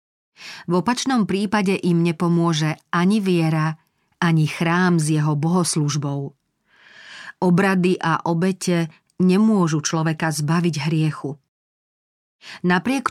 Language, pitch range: Slovak, 165-200 Hz